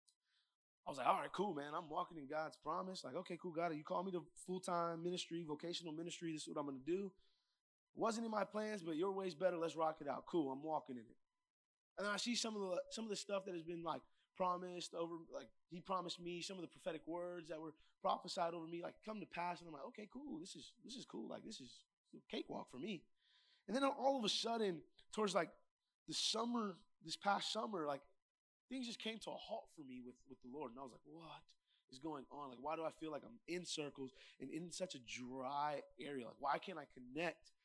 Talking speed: 245 wpm